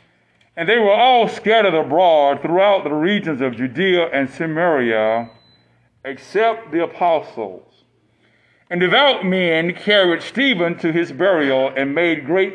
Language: English